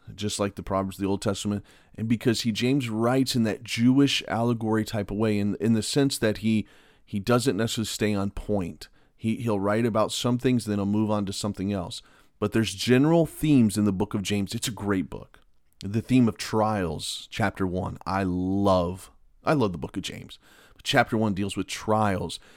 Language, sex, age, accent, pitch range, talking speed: English, male, 30-49, American, 100-120 Hz, 205 wpm